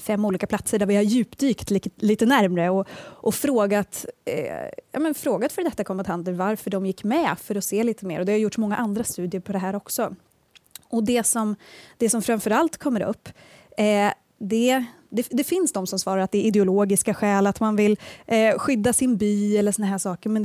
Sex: female